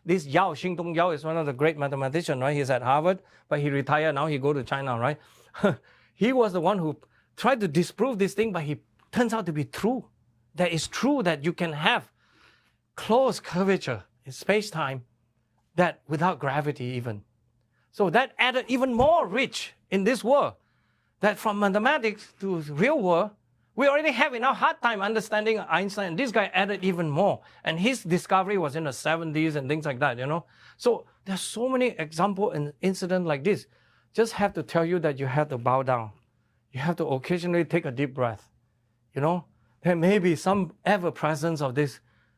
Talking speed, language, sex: 190 wpm, English, male